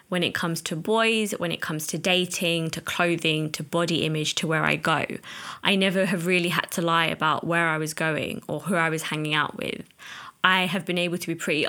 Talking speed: 230 wpm